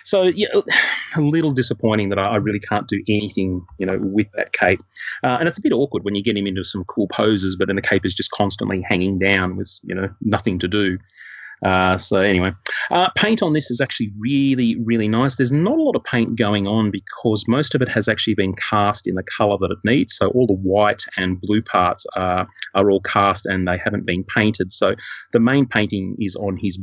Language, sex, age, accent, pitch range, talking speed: English, male, 30-49, Australian, 95-115 Hz, 230 wpm